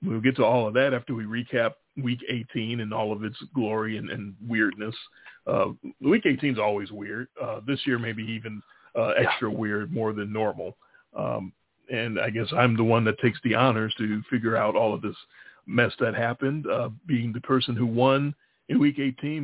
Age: 40-59